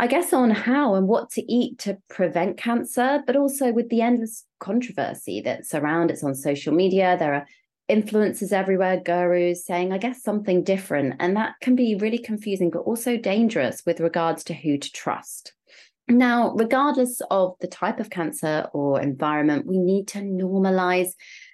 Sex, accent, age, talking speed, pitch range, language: female, British, 30-49, 170 wpm, 165-215 Hz, English